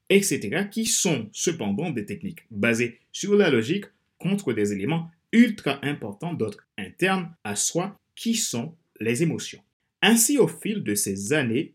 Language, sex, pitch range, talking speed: French, male, 110-185 Hz, 150 wpm